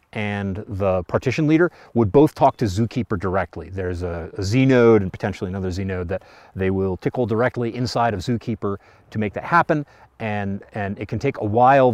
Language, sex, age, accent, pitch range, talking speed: English, male, 40-59, American, 95-120 Hz, 195 wpm